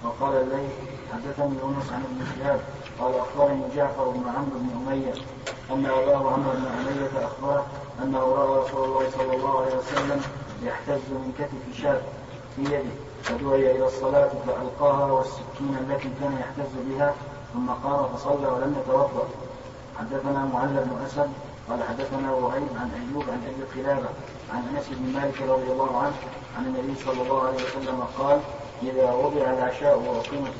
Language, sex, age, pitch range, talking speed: Arabic, male, 30-49, 130-140 Hz, 150 wpm